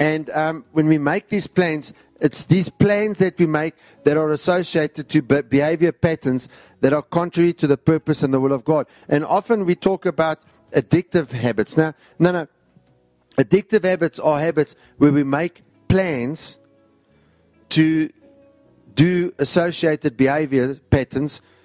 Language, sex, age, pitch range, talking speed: English, male, 50-69, 135-170 Hz, 145 wpm